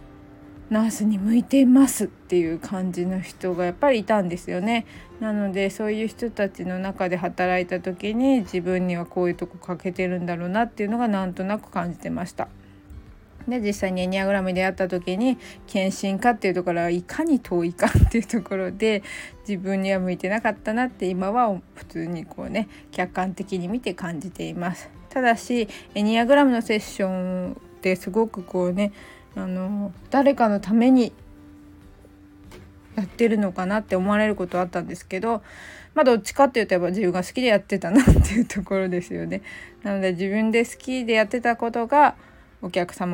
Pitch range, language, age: 180-235 Hz, Japanese, 20-39